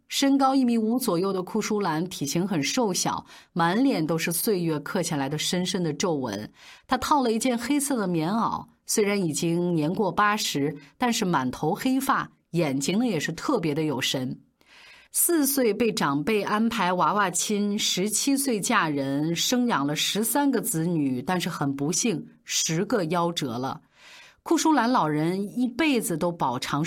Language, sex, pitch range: Chinese, female, 165-245 Hz